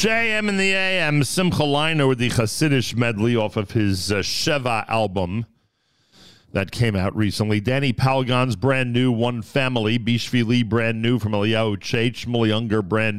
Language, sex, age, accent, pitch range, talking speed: English, male, 50-69, American, 95-125 Hz, 155 wpm